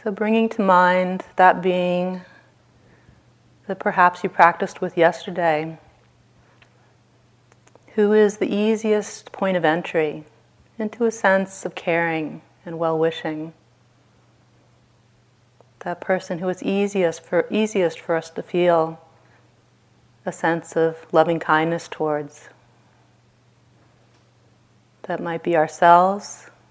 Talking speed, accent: 105 wpm, American